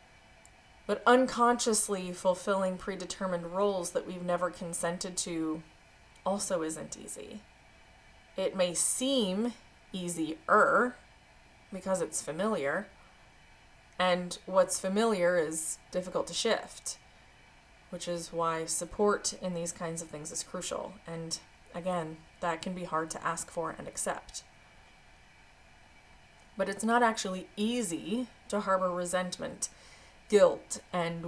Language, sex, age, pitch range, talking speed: English, female, 20-39, 175-200 Hz, 115 wpm